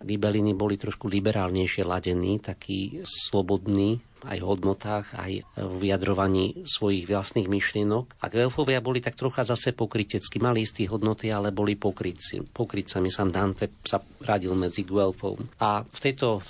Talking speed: 140 wpm